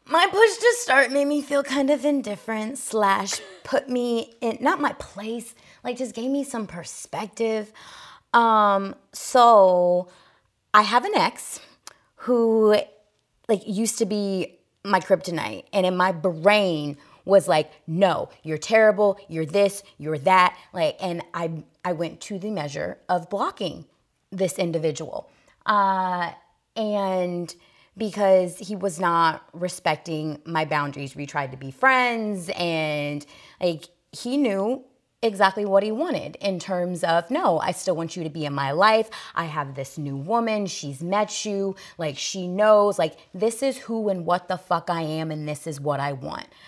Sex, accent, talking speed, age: female, American, 160 wpm, 20-39